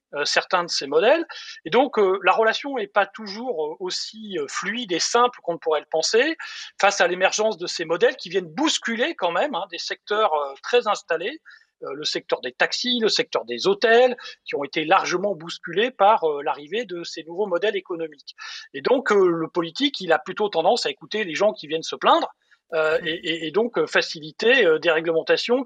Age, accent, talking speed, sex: 40-59, French, 210 wpm, male